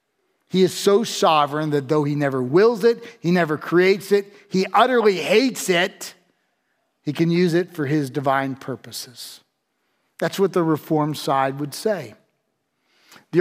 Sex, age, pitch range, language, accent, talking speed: male, 40-59, 145-185 Hz, English, American, 150 wpm